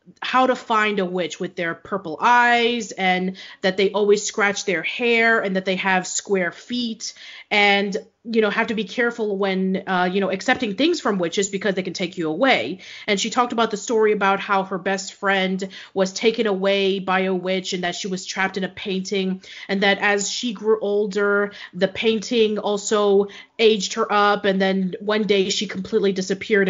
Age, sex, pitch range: 30-49, female, 190-220 Hz